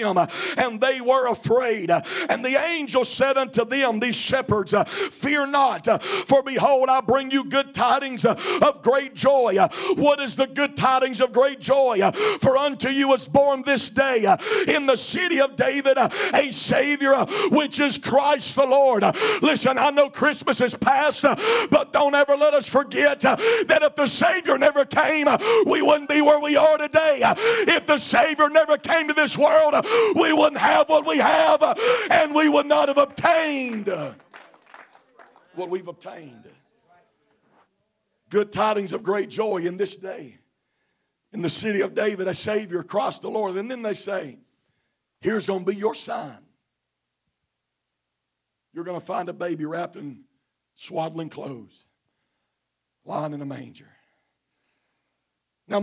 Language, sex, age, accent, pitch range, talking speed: English, male, 50-69, American, 215-300 Hz, 155 wpm